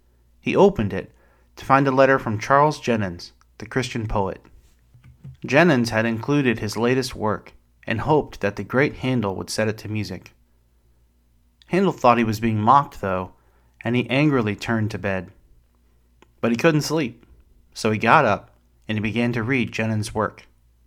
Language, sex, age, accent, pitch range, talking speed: English, male, 30-49, American, 80-125 Hz, 165 wpm